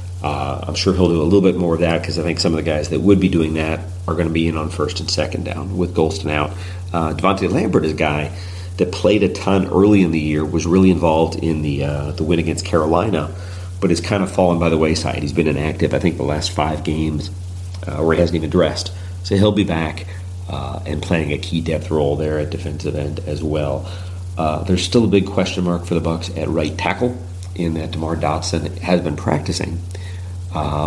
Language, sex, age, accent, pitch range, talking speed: English, male, 40-59, American, 80-90 Hz, 235 wpm